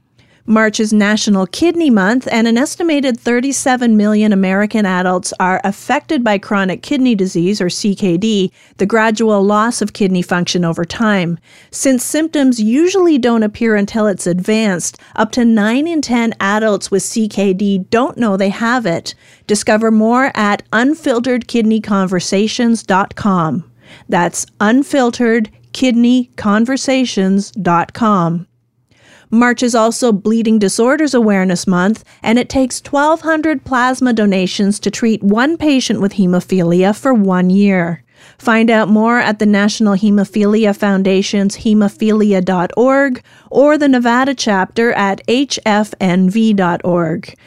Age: 40-59